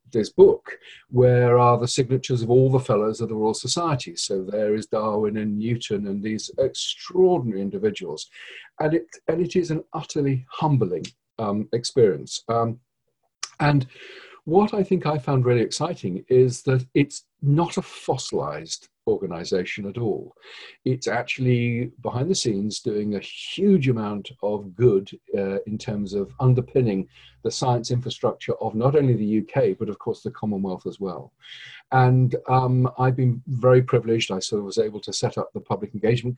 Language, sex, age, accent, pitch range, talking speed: English, male, 50-69, British, 110-140 Hz, 165 wpm